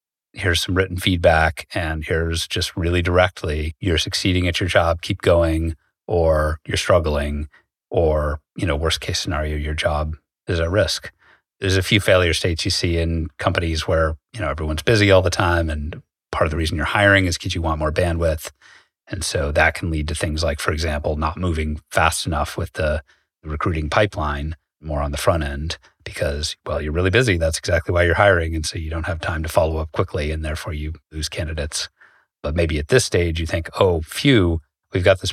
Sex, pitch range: male, 80-90 Hz